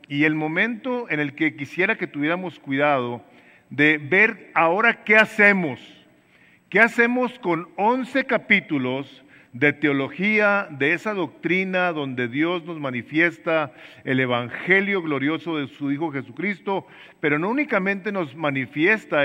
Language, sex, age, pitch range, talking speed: English, male, 50-69, 145-190 Hz, 130 wpm